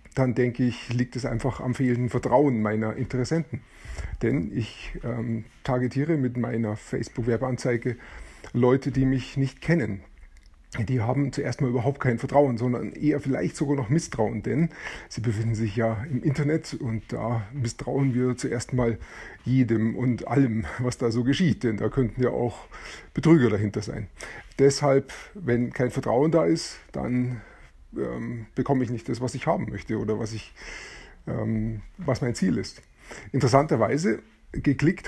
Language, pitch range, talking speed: German, 115-135 Hz, 150 wpm